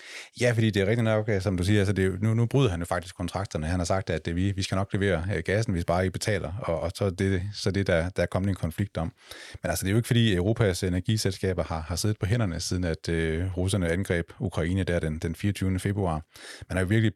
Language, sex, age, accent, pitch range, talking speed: Danish, male, 30-49, native, 85-105 Hz, 275 wpm